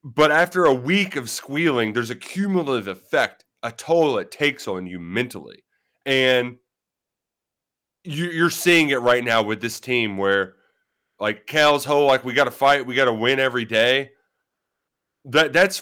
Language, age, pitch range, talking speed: English, 30-49, 120-170 Hz, 165 wpm